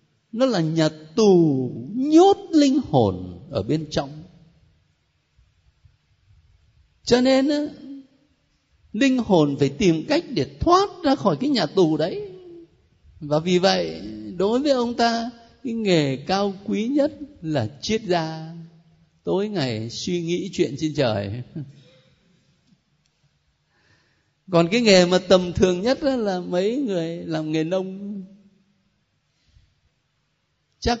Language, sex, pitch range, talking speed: Vietnamese, male, 155-260 Hz, 120 wpm